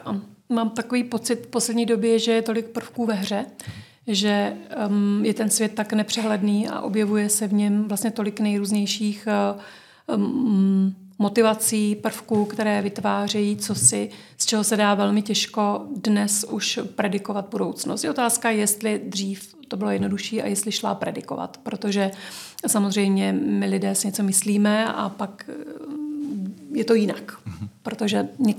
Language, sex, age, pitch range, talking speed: Czech, female, 40-59, 200-230 Hz, 140 wpm